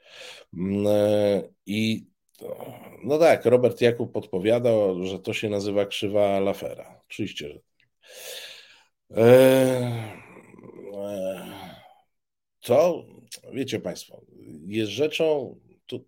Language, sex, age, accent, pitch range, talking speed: Polish, male, 50-69, native, 95-125 Hz, 70 wpm